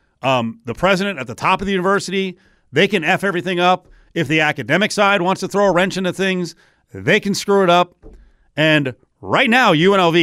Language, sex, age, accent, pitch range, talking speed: English, male, 40-59, American, 135-175 Hz, 200 wpm